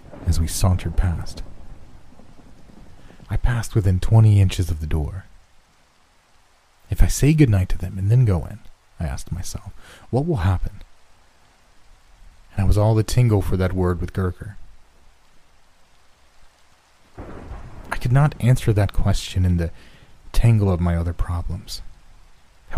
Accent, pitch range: American, 85-105 Hz